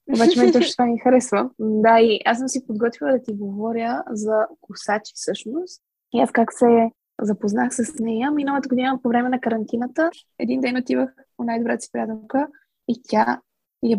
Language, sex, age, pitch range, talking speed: Bulgarian, female, 20-39, 220-265 Hz, 170 wpm